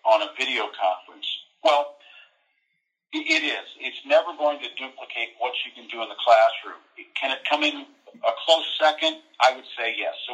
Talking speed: 180 wpm